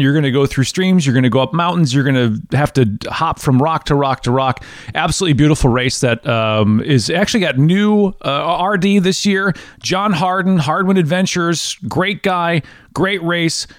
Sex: male